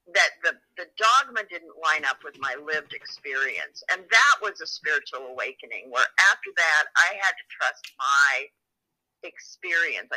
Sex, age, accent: female, 50-69, American